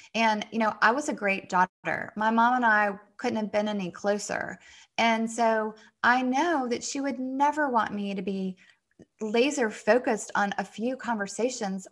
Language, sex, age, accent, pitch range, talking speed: English, female, 20-39, American, 195-230 Hz, 175 wpm